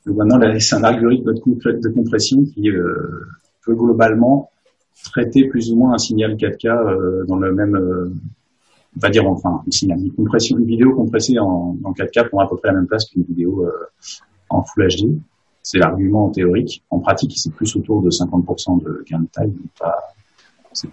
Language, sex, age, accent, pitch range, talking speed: French, male, 40-59, French, 95-125 Hz, 185 wpm